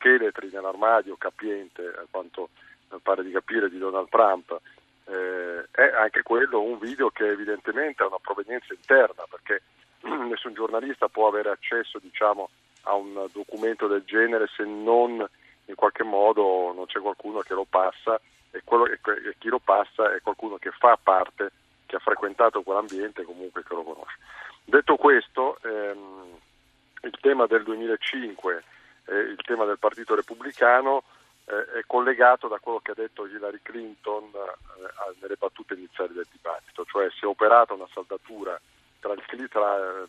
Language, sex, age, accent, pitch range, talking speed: Italian, male, 50-69, native, 95-120 Hz, 155 wpm